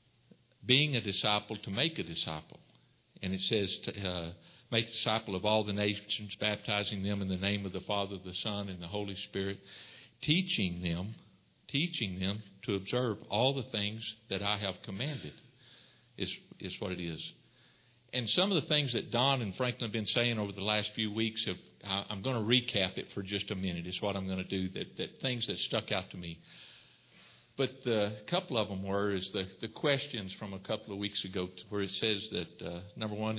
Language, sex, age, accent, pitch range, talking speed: English, male, 60-79, American, 95-120 Hz, 205 wpm